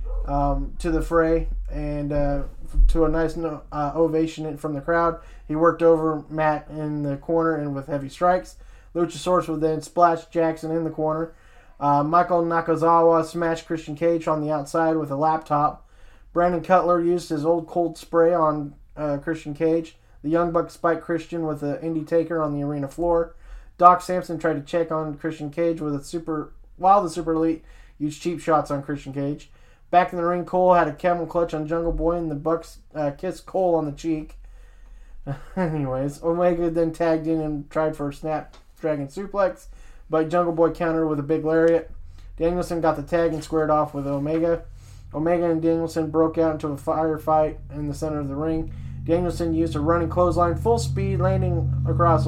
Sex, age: male, 20-39